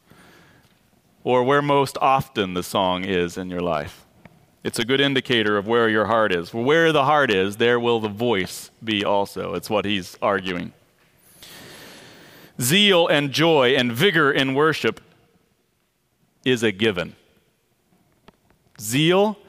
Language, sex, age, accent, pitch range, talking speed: English, male, 40-59, American, 110-155 Hz, 135 wpm